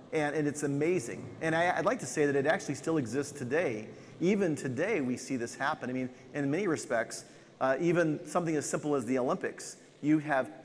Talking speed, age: 205 wpm, 40-59